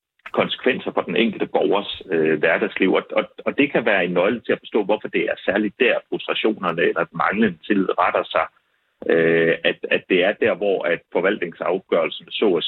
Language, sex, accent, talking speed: Danish, male, native, 190 wpm